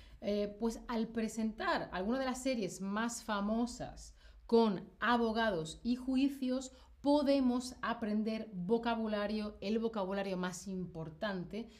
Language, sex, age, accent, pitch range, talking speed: Spanish, female, 30-49, Spanish, 185-230 Hz, 105 wpm